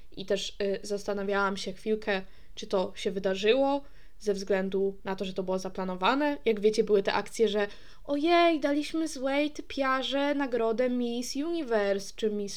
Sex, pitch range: female, 200-245 Hz